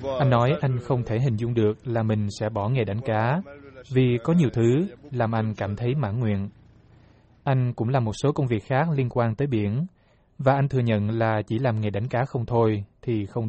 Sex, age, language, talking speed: male, 20-39, Vietnamese, 225 wpm